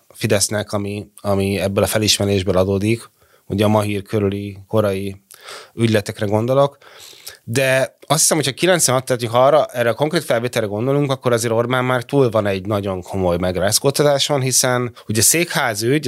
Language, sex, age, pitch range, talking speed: Hungarian, male, 20-39, 100-125 Hz, 140 wpm